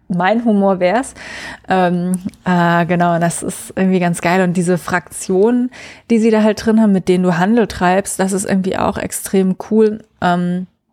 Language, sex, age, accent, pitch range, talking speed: German, female, 20-39, German, 170-195 Hz, 180 wpm